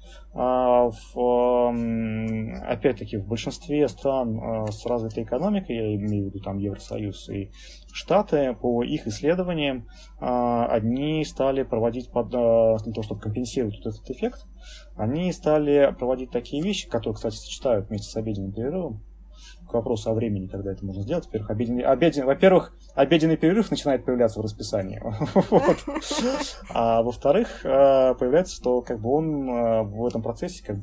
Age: 20-39